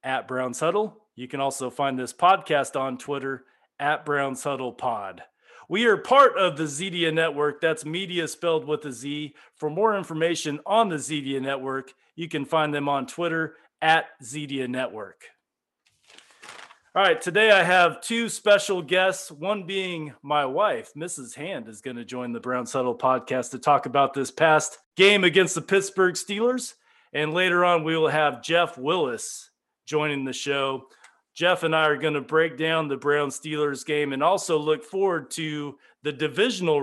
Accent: American